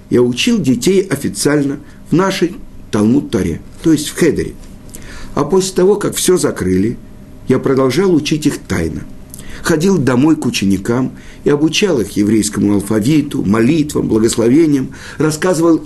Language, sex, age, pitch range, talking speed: Russian, male, 50-69, 110-170 Hz, 130 wpm